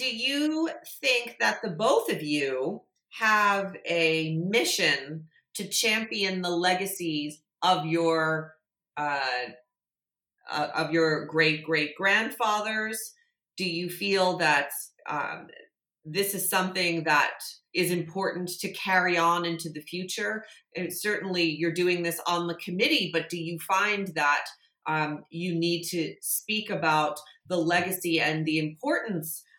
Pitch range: 155-190 Hz